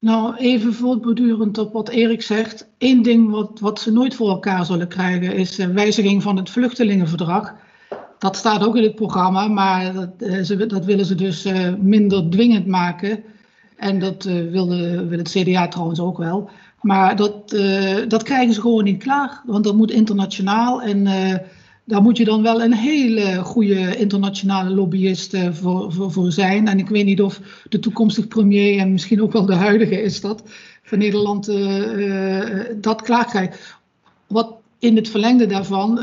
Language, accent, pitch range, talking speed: Dutch, Dutch, 190-230 Hz, 170 wpm